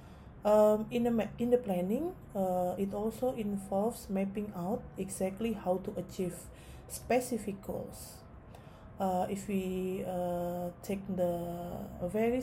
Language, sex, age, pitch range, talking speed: Indonesian, female, 20-39, 180-215 Hz, 125 wpm